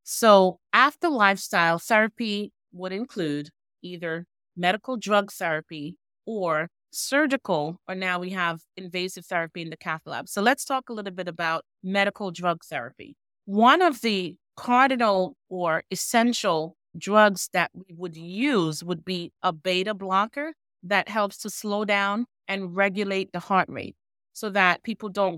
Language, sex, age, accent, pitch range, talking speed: English, female, 30-49, American, 175-215 Hz, 145 wpm